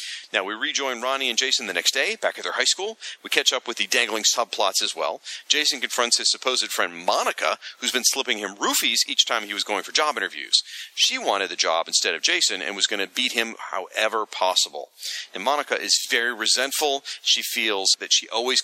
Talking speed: 215 wpm